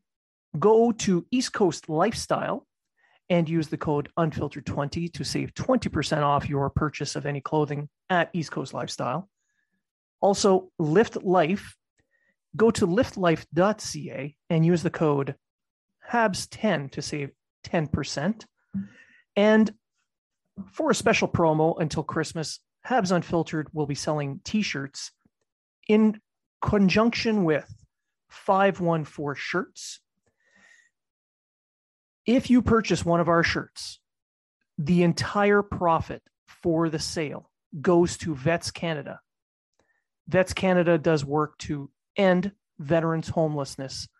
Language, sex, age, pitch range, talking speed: English, male, 30-49, 150-195 Hz, 110 wpm